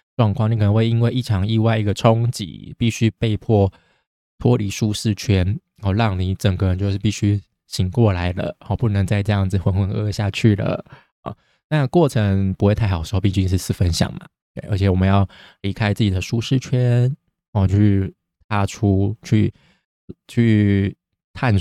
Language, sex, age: Chinese, male, 20-39